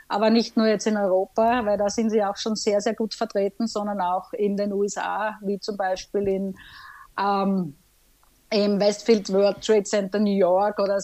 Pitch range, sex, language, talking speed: 200-225 Hz, female, German, 180 wpm